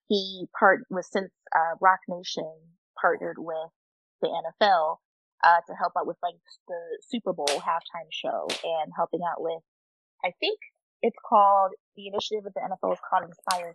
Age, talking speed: 20-39, 165 wpm